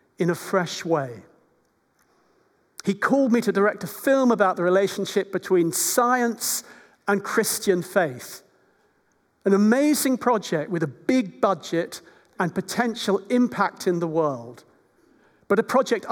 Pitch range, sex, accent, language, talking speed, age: 170-215 Hz, male, British, English, 130 wpm, 50-69